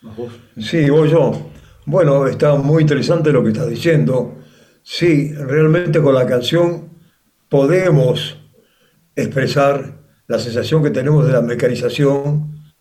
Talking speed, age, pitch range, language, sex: 115 wpm, 50-69, 130-160 Hz, Spanish, male